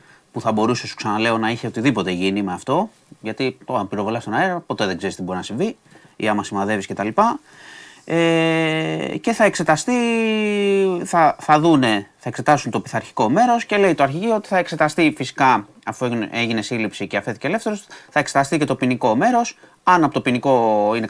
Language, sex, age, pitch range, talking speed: Greek, male, 30-49, 110-150 Hz, 185 wpm